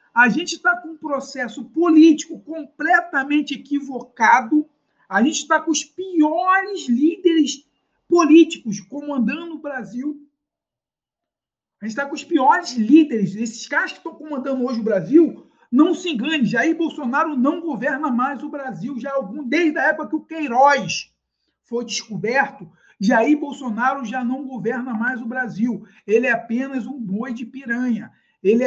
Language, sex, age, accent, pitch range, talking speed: Portuguese, male, 50-69, Brazilian, 225-300 Hz, 145 wpm